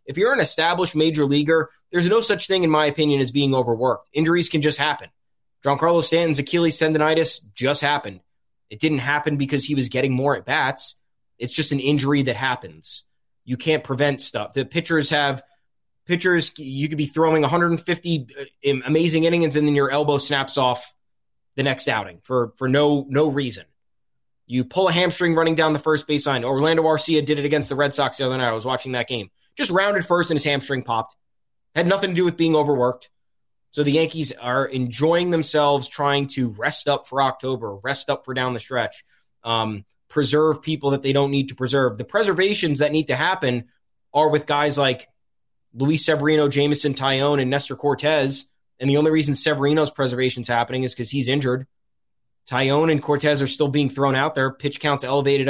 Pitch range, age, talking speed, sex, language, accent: 130-155 Hz, 20-39, 190 wpm, male, English, American